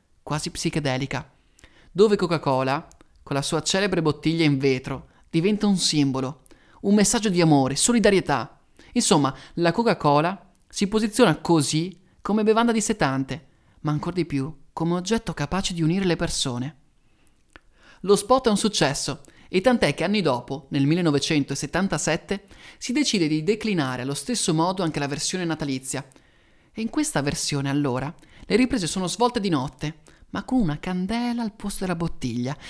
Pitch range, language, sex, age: 145-200 Hz, Italian, male, 30-49